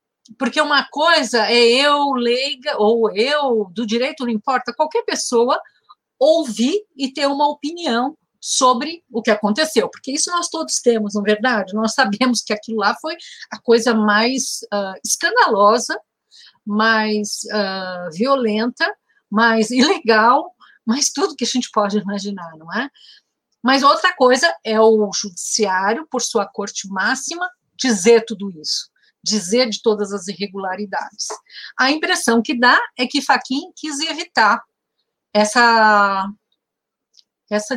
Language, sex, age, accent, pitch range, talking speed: Portuguese, female, 50-69, Brazilian, 210-270 Hz, 130 wpm